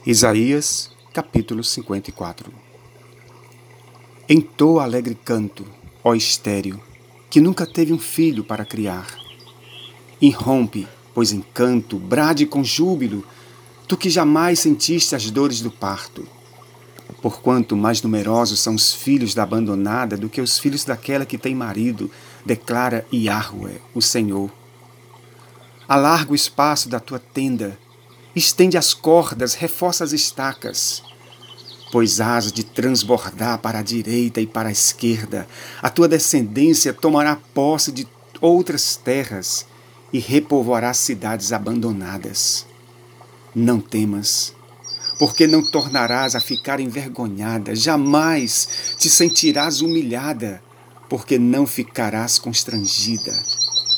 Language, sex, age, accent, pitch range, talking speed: Portuguese, male, 40-59, Brazilian, 110-140 Hz, 110 wpm